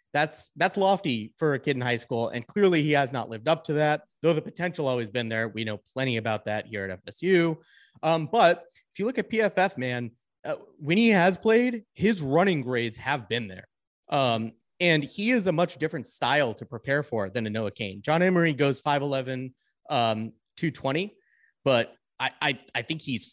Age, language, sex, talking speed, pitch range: 30-49, English, male, 205 wpm, 120-175 Hz